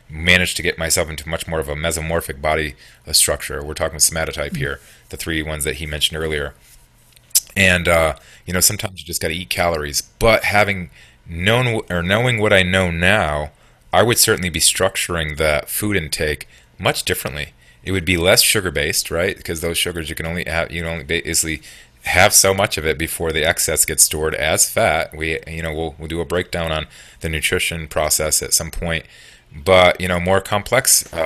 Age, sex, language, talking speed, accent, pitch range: 30-49, male, English, 200 wpm, American, 80-90 Hz